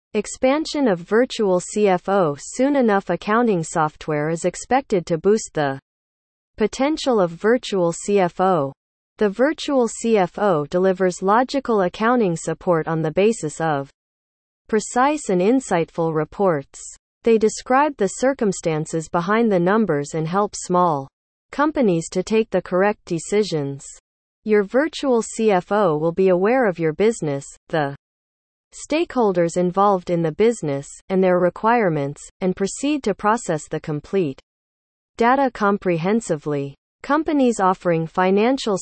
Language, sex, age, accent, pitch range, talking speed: English, female, 40-59, American, 160-225 Hz, 120 wpm